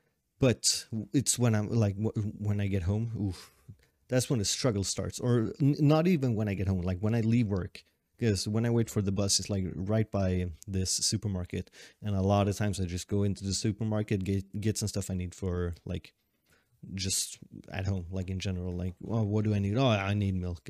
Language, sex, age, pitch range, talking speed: English, male, 30-49, 95-115 Hz, 225 wpm